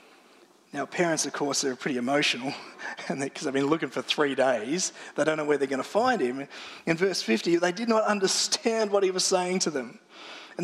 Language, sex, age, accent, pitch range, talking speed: English, male, 30-49, Australian, 135-190 Hz, 215 wpm